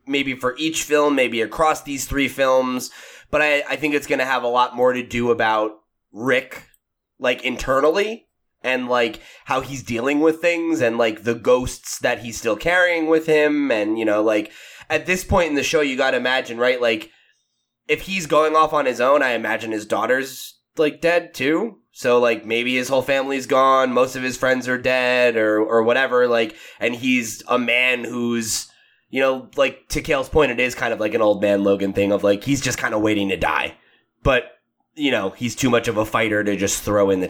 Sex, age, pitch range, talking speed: male, 20-39, 115-140 Hz, 215 wpm